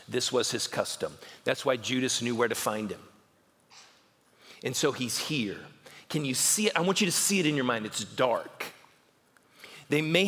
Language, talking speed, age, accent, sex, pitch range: English, 195 wpm, 40-59, American, male, 140-185 Hz